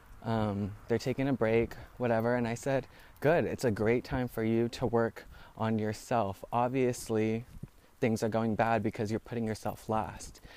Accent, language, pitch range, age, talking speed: American, English, 110-145 Hz, 20-39, 170 wpm